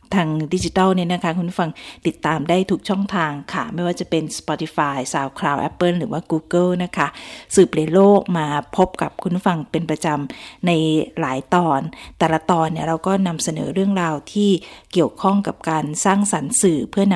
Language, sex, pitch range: Thai, female, 160-195 Hz